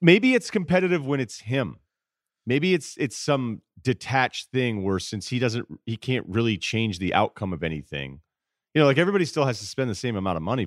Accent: American